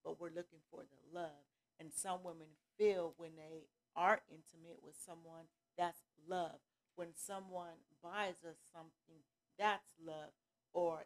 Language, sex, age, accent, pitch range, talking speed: English, female, 40-59, American, 155-180 Hz, 140 wpm